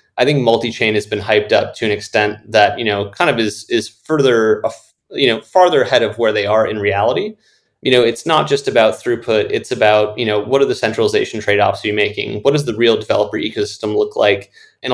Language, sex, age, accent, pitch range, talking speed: English, male, 30-49, American, 105-145 Hz, 220 wpm